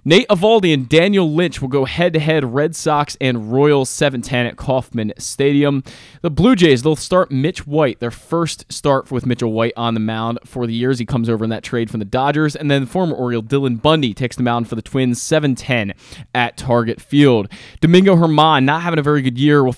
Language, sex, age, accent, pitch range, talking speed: English, male, 20-39, American, 120-155 Hz, 210 wpm